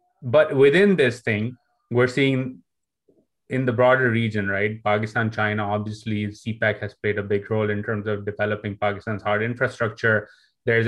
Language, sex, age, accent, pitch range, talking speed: English, male, 30-49, Indian, 105-120 Hz, 155 wpm